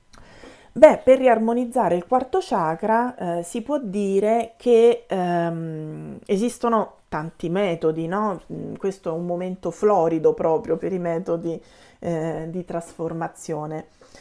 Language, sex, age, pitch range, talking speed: Italian, female, 30-49, 170-210 Hz, 120 wpm